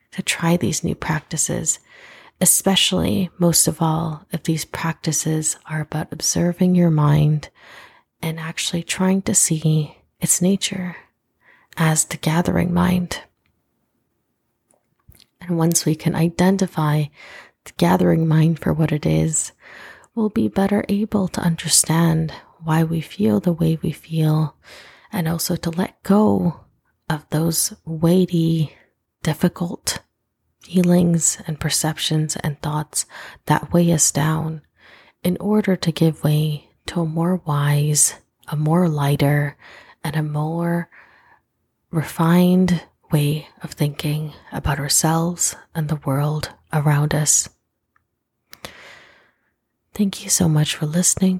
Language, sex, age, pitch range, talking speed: English, female, 30-49, 150-175 Hz, 120 wpm